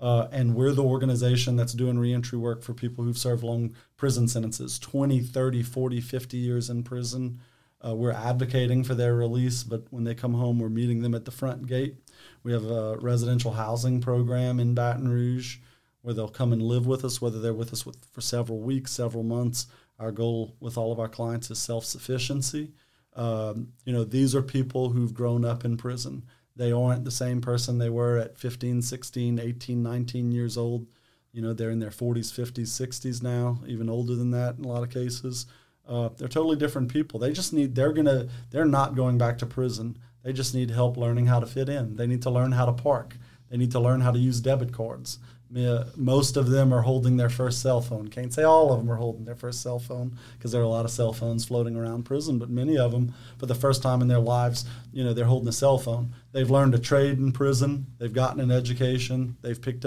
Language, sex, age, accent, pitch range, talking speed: English, male, 40-59, American, 120-130 Hz, 220 wpm